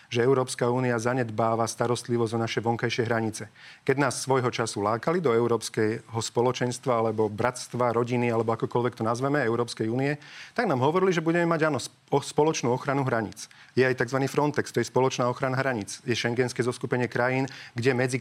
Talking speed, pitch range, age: 170 wpm, 120-135 Hz, 40-59